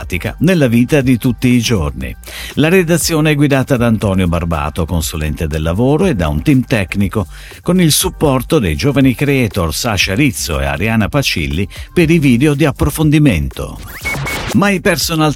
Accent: native